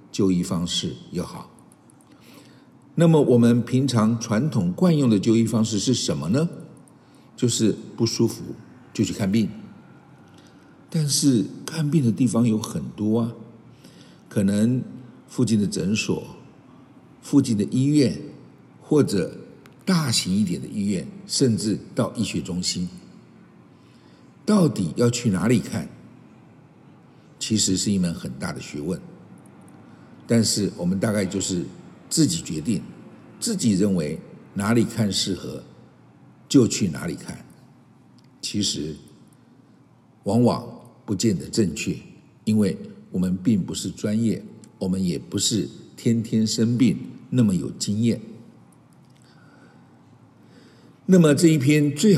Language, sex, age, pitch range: Chinese, male, 60-79, 105-145 Hz